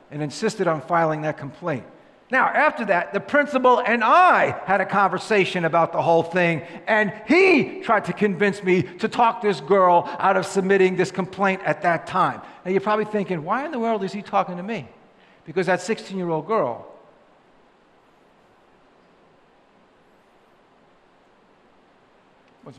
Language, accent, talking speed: English, American, 145 wpm